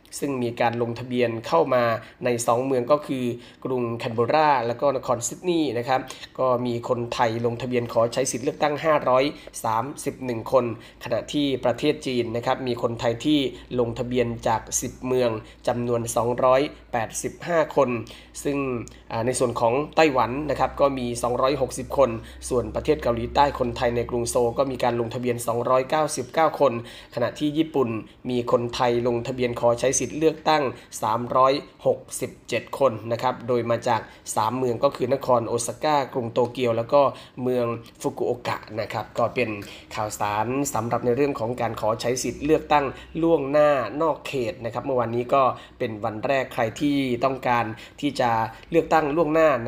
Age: 20-39